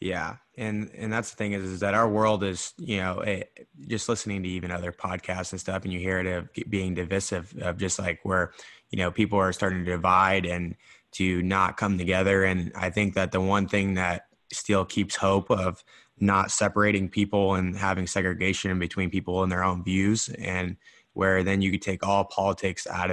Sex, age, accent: male, 20-39, American